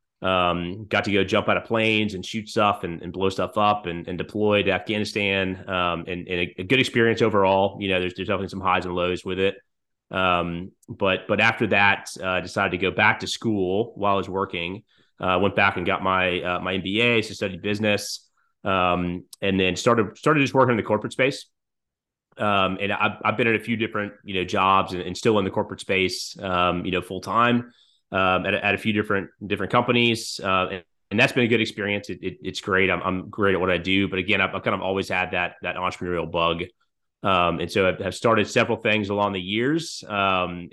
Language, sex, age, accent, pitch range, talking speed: English, male, 30-49, American, 90-105 Hz, 225 wpm